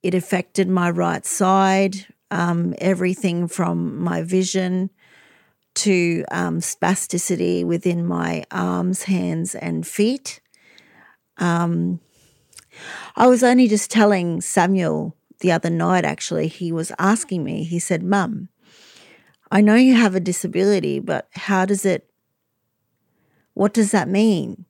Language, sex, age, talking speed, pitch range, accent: English, female, 40-59, 125 wpm, 175-215 Hz, Australian